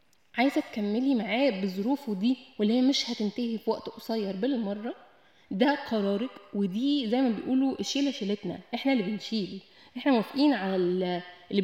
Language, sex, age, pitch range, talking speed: Arabic, female, 10-29, 205-265 Hz, 140 wpm